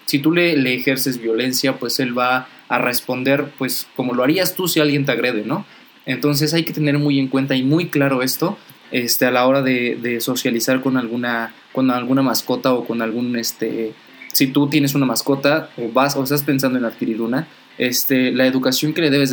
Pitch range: 125-140 Hz